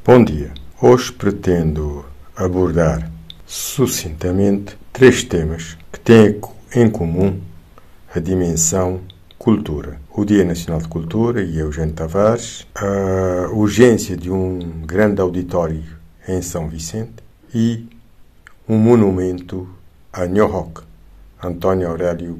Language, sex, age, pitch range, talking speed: Portuguese, male, 60-79, 85-110 Hz, 105 wpm